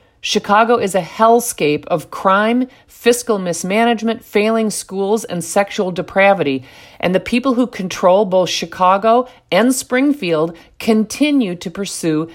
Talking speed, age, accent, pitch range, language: 120 wpm, 50-69, American, 165-220 Hz, English